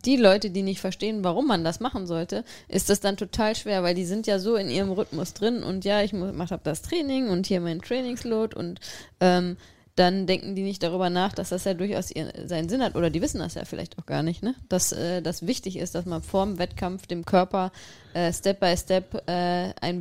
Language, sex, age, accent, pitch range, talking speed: German, female, 20-39, German, 175-200 Hz, 230 wpm